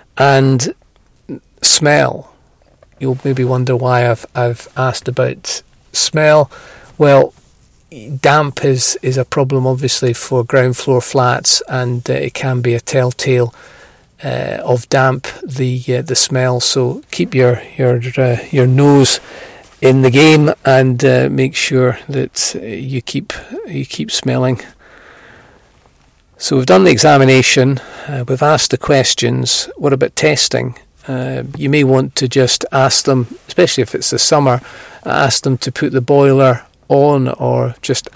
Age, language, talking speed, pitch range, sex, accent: 40-59, English, 145 wpm, 125-135 Hz, male, British